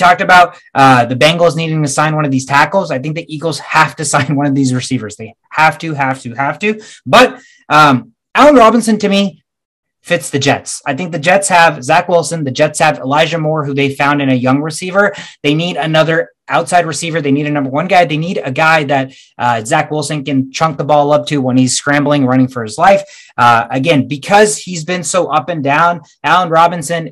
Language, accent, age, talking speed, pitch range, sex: English, American, 20-39, 225 wpm, 135-170 Hz, male